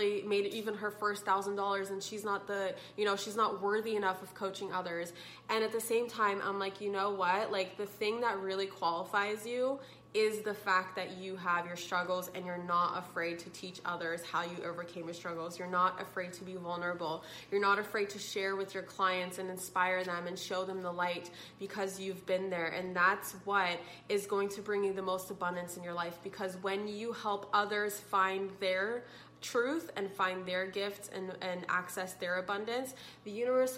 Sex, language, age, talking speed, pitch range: female, English, 20-39, 205 wpm, 185-215 Hz